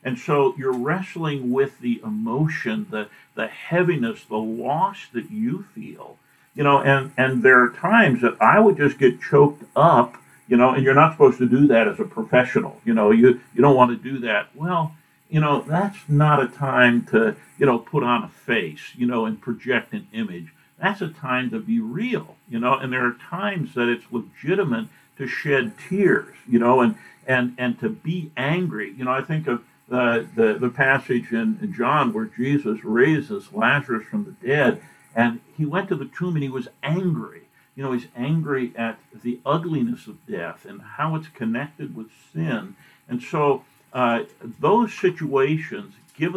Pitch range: 125-180 Hz